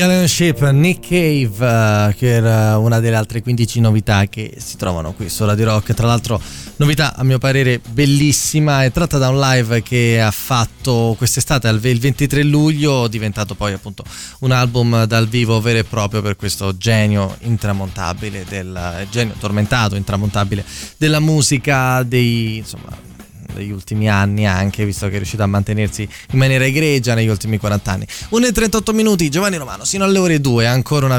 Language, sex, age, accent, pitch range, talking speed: Italian, male, 20-39, native, 105-135 Hz, 165 wpm